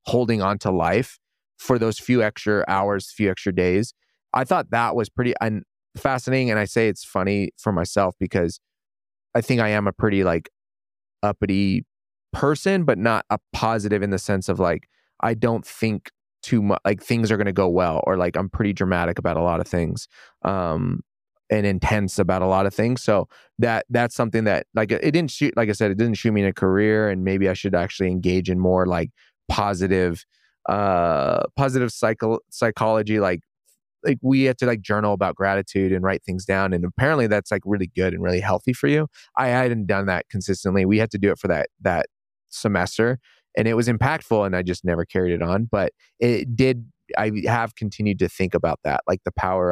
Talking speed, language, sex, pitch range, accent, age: 205 wpm, English, male, 90-110 Hz, American, 30-49